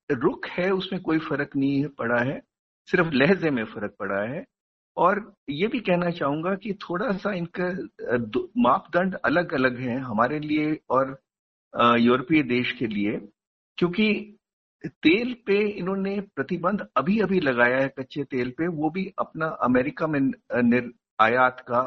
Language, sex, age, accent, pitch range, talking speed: Hindi, male, 50-69, native, 135-200 Hz, 150 wpm